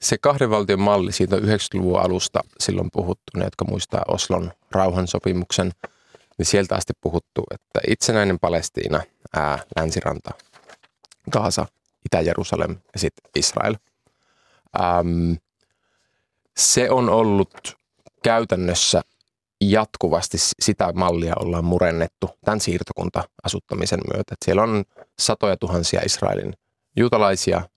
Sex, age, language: male, 30-49, Finnish